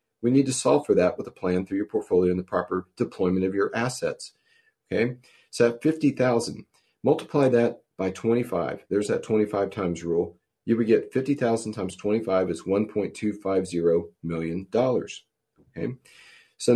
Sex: male